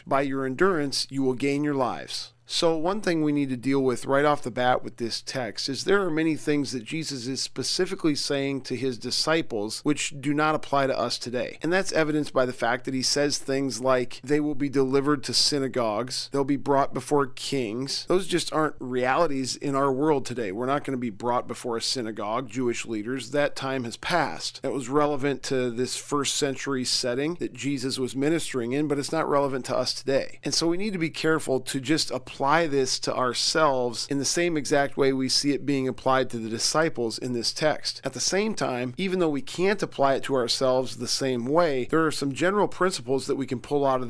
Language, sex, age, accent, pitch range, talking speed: English, male, 40-59, American, 130-150 Hz, 220 wpm